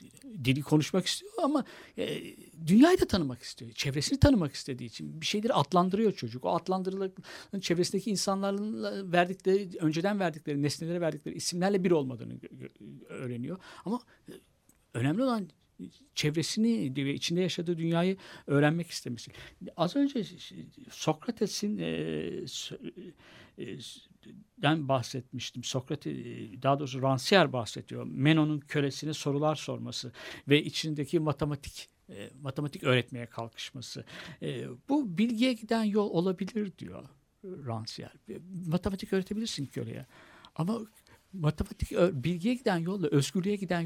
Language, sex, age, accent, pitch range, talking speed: Turkish, male, 60-79, native, 140-210 Hz, 105 wpm